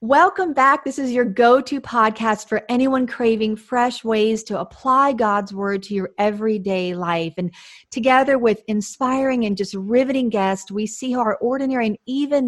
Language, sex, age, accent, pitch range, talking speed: English, female, 40-59, American, 195-245 Hz, 170 wpm